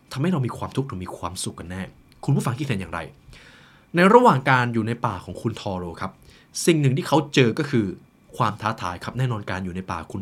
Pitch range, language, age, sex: 105-150 Hz, Thai, 20-39, male